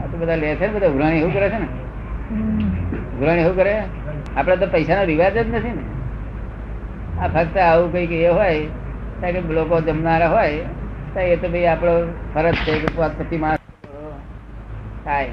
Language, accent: Gujarati, native